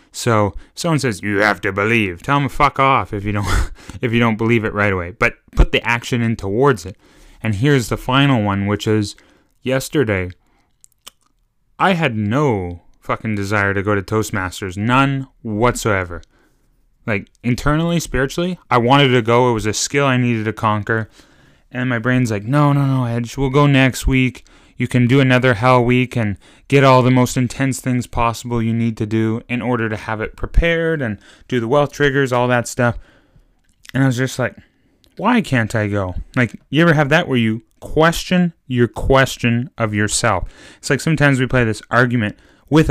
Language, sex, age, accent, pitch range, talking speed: English, male, 20-39, American, 110-135 Hz, 190 wpm